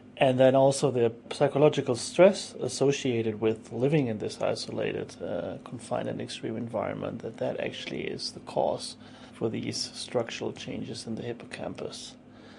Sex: male